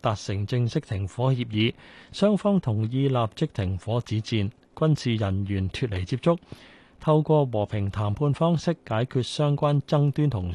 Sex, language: male, Chinese